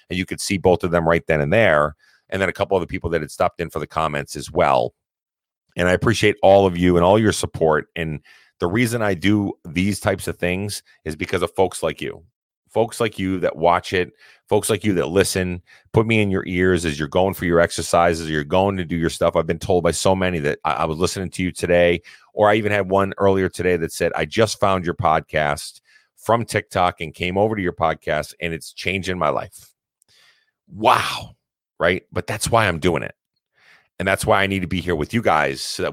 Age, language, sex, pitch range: 30-49, English, male, 80-95 Hz